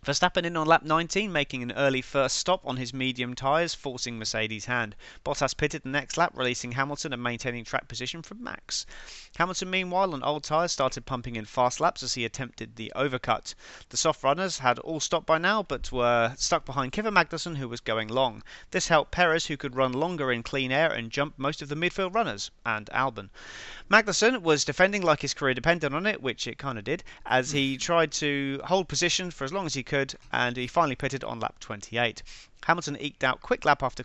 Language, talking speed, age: English, 215 wpm, 30-49